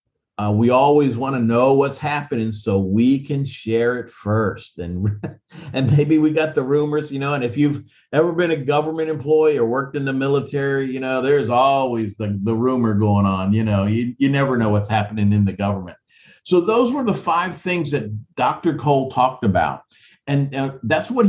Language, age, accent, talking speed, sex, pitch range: English, 50-69, American, 200 wpm, male, 110-150 Hz